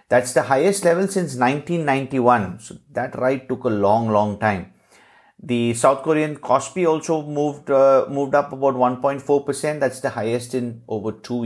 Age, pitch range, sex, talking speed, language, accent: 50-69, 120-155 Hz, male, 160 wpm, English, Indian